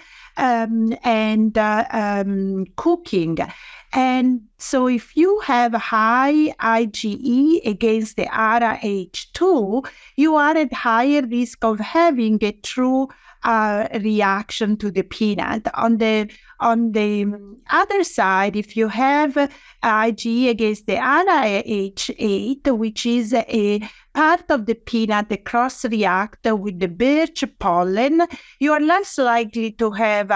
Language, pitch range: English, 215-265 Hz